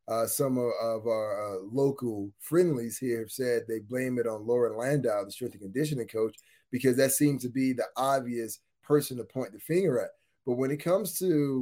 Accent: American